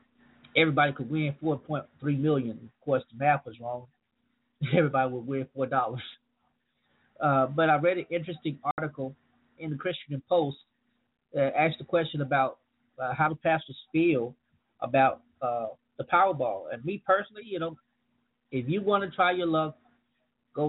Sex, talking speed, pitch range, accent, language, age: male, 155 wpm, 140-180 Hz, American, English, 30-49